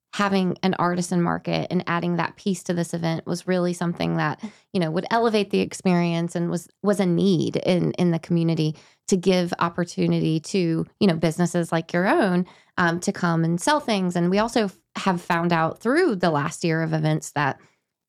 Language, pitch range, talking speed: English, 170-195 Hz, 200 wpm